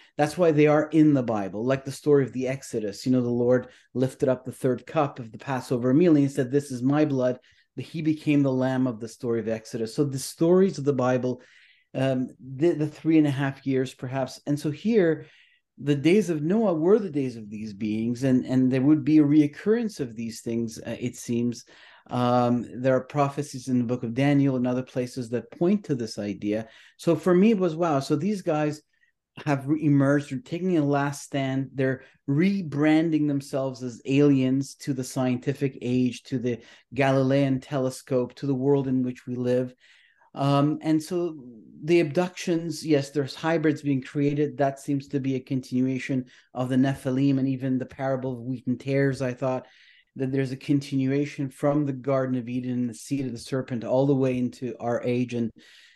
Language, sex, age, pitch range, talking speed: English, male, 30-49, 125-150 Hz, 200 wpm